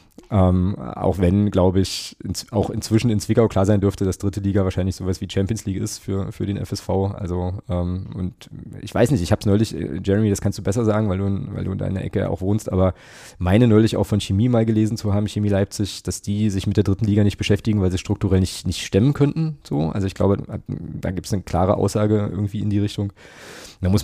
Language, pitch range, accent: German, 95-105 Hz, German